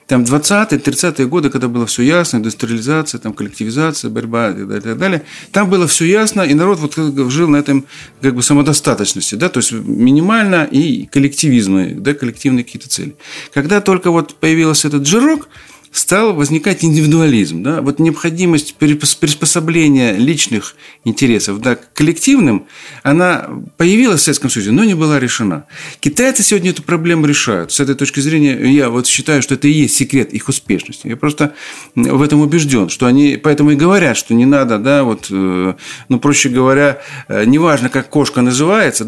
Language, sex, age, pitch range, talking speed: Russian, male, 50-69, 130-165 Hz, 155 wpm